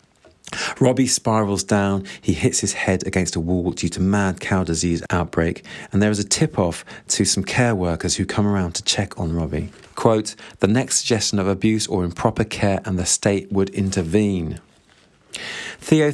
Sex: male